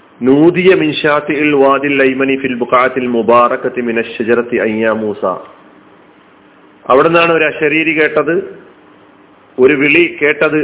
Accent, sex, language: native, male, Malayalam